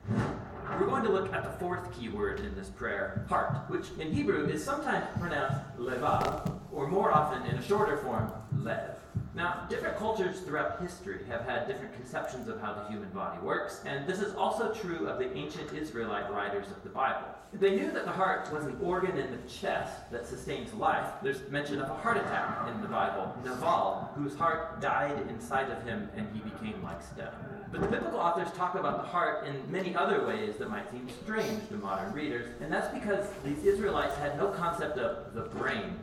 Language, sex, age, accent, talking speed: English, male, 40-59, American, 200 wpm